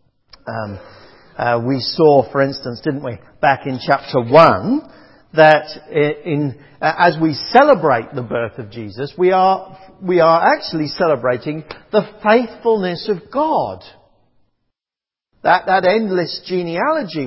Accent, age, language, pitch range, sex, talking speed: British, 50-69, English, 140-220 Hz, male, 120 wpm